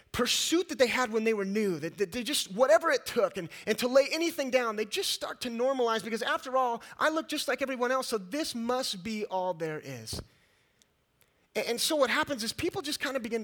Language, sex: English, male